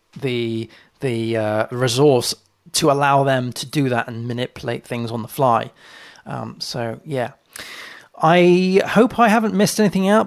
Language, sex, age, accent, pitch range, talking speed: English, male, 30-49, British, 130-170 Hz, 150 wpm